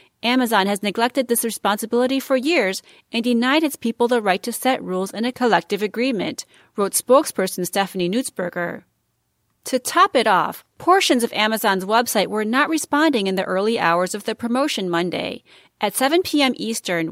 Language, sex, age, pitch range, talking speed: English, female, 30-49, 195-265 Hz, 165 wpm